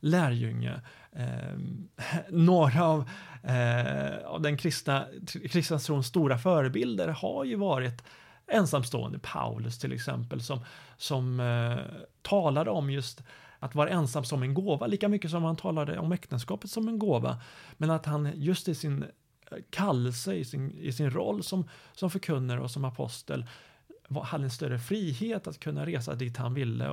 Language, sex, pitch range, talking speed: Swedish, male, 125-165 Hz, 150 wpm